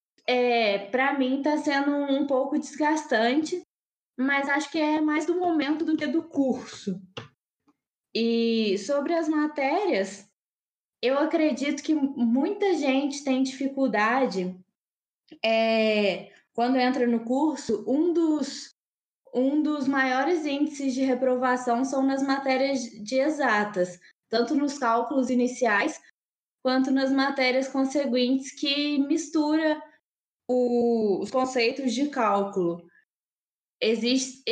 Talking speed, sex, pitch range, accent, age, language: 110 wpm, female, 225-285 Hz, Brazilian, 10-29, Portuguese